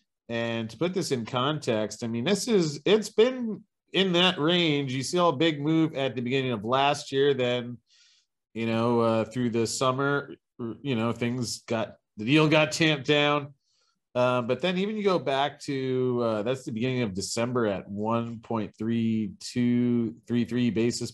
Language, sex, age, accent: English, male, 40-59, American